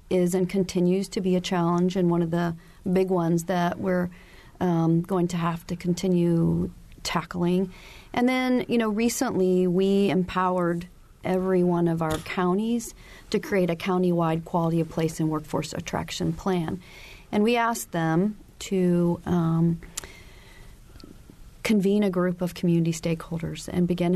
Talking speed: 145 wpm